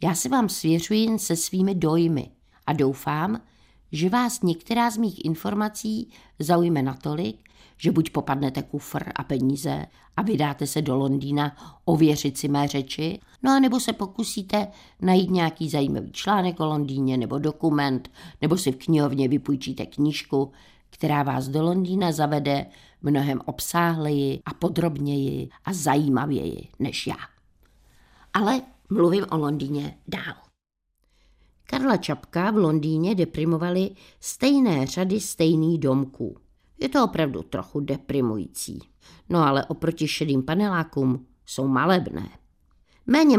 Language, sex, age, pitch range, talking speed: Czech, female, 50-69, 140-180 Hz, 125 wpm